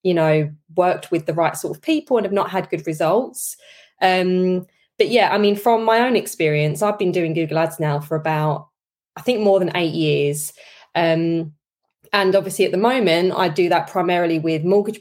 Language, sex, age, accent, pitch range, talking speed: English, female, 20-39, British, 160-205 Hz, 200 wpm